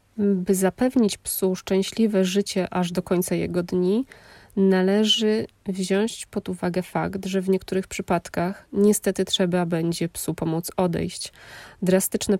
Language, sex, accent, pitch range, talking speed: Polish, female, native, 180-195 Hz, 125 wpm